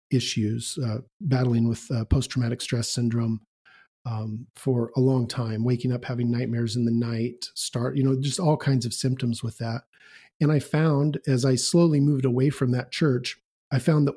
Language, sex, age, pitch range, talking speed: English, male, 40-59, 120-140 Hz, 190 wpm